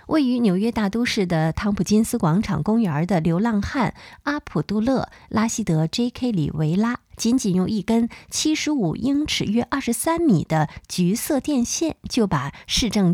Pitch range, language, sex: 170-235 Hz, Chinese, female